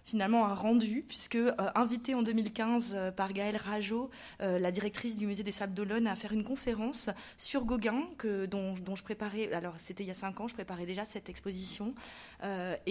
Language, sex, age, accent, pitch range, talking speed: French, female, 20-39, French, 185-225 Hz, 205 wpm